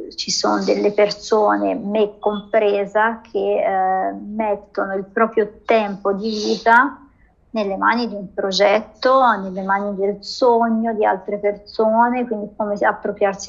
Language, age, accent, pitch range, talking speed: Italian, 30-49, native, 200-215 Hz, 130 wpm